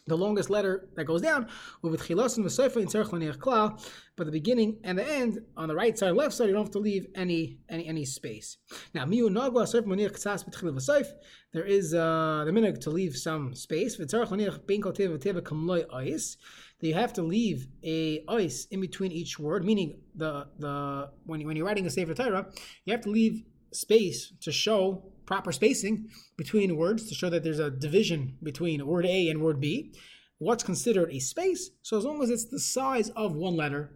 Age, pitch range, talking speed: 20-39, 160-220 Hz, 175 wpm